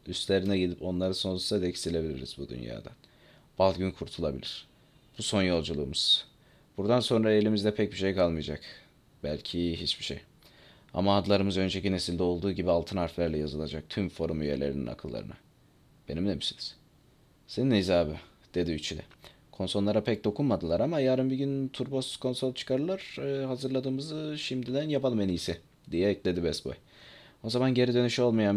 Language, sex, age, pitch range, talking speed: Turkish, male, 30-49, 85-125 Hz, 140 wpm